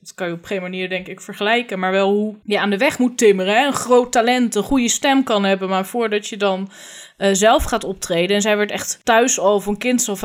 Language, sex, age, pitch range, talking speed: Dutch, female, 10-29, 195-250 Hz, 250 wpm